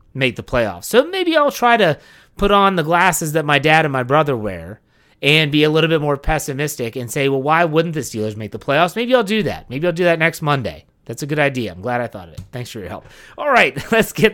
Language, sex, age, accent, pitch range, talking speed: English, male, 30-49, American, 125-185 Hz, 270 wpm